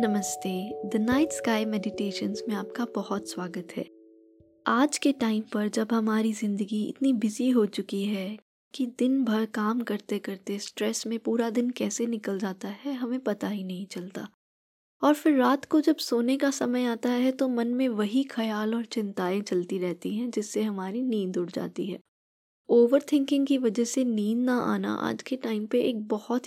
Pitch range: 200-255 Hz